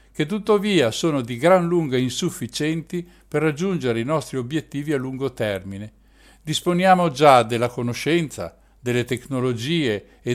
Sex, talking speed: male, 130 wpm